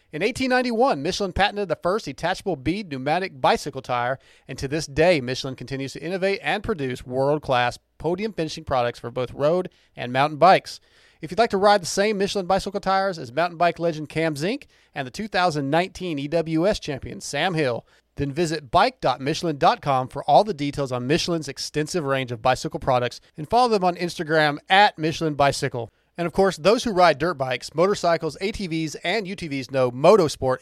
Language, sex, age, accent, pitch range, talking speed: English, male, 40-59, American, 135-185 Hz, 175 wpm